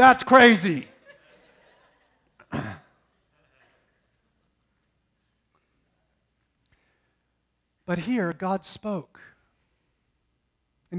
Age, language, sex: 40-59, English, male